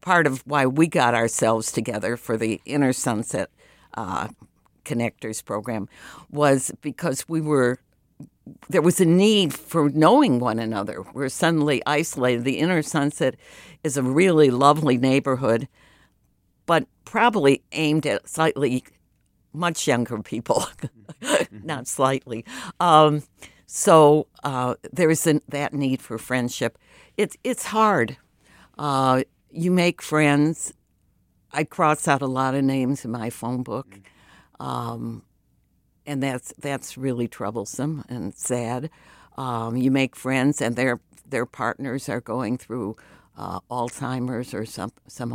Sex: female